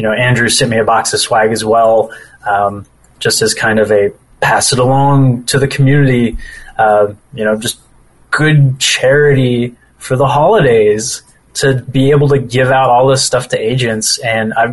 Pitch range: 115-140 Hz